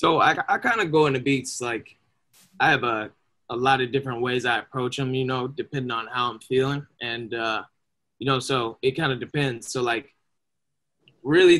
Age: 20-39